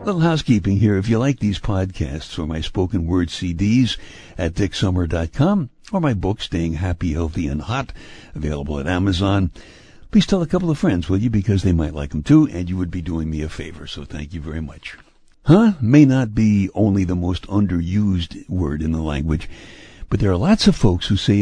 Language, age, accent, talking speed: English, 60-79, American, 205 wpm